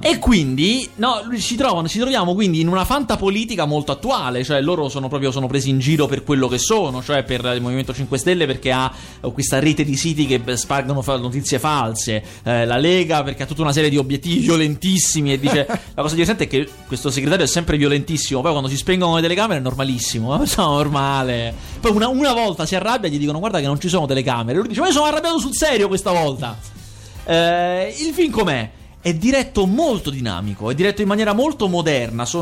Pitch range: 135-195 Hz